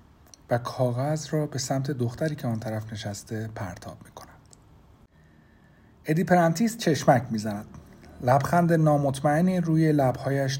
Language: Persian